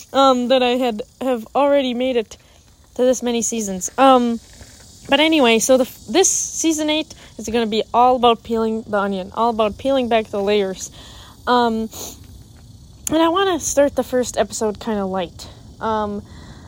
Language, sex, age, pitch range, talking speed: English, female, 20-39, 210-260 Hz, 165 wpm